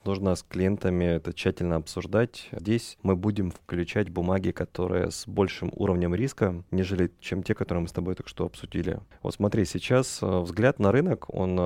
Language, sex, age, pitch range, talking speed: Russian, male, 30-49, 90-110 Hz, 170 wpm